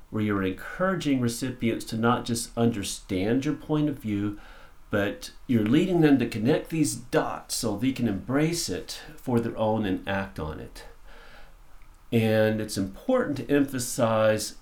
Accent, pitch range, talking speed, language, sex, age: American, 105-140 Hz, 150 wpm, English, male, 50-69